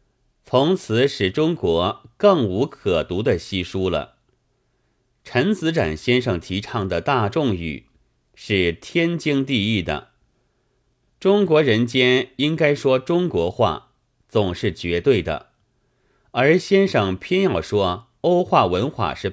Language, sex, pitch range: Chinese, male, 95-130 Hz